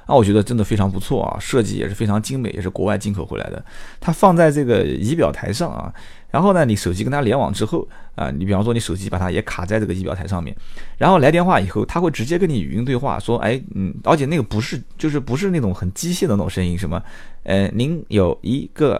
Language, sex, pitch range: Chinese, male, 95-140 Hz